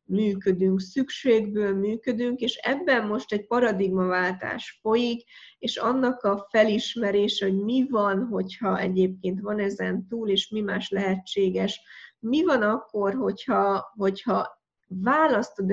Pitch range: 195-230 Hz